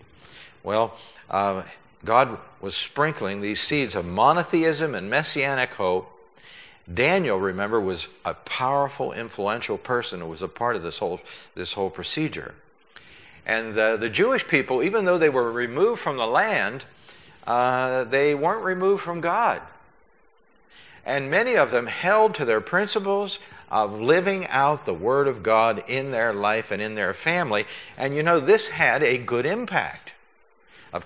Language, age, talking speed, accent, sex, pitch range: English, 60-79, 155 wpm, American, male, 115-185 Hz